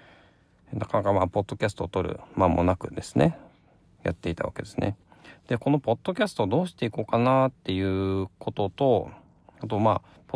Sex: male